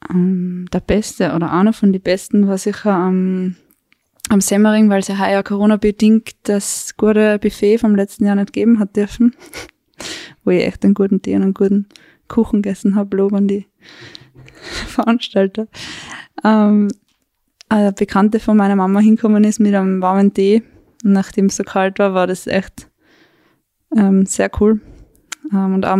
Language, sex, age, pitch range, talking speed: German, female, 20-39, 195-215 Hz, 160 wpm